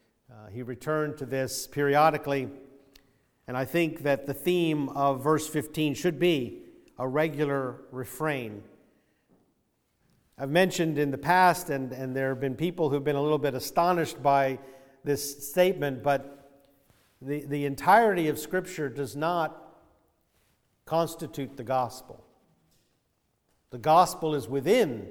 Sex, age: male, 50-69